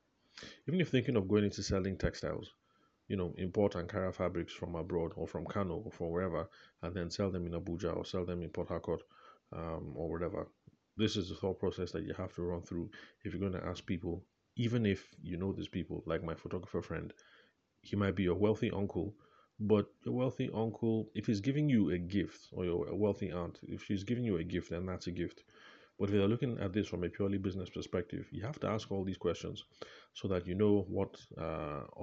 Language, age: English, 30-49